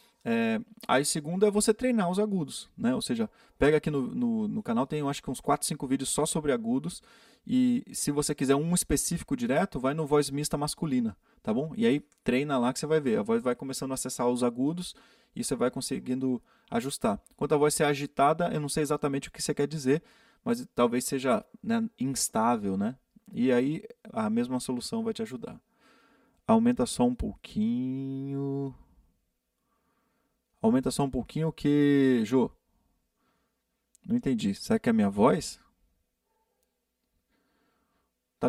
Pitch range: 140-230 Hz